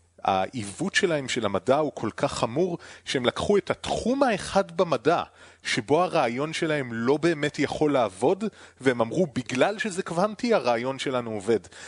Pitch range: 115-170 Hz